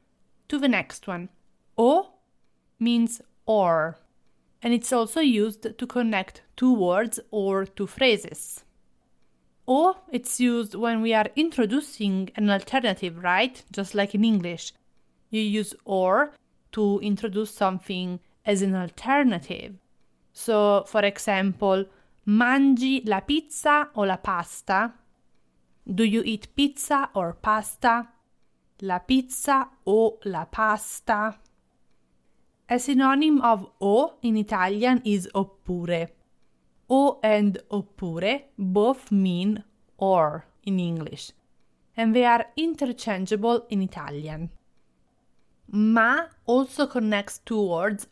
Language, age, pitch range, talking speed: English, 30-49, 180-240 Hz, 110 wpm